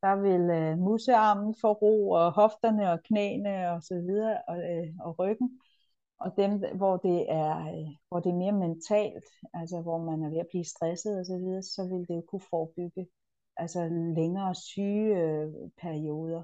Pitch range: 160-190 Hz